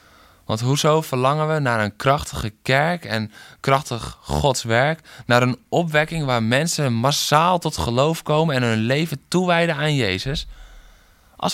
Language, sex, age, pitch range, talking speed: Dutch, male, 20-39, 100-140 Hz, 145 wpm